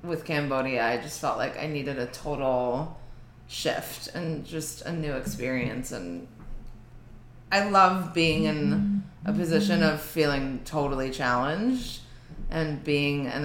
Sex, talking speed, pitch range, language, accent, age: female, 135 wpm, 140-185 Hz, English, American, 20-39